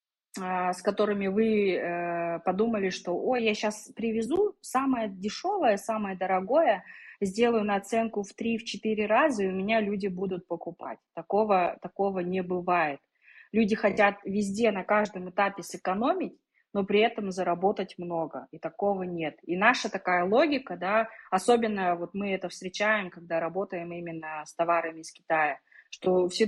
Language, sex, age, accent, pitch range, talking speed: Russian, female, 20-39, native, 175-215 Hz, 145 wpm